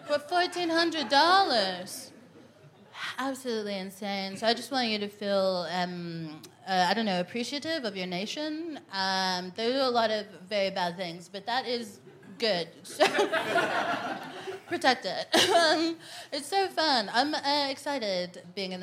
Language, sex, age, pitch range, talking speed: English, female, 20-39, 185-240 Hz, 145 wpm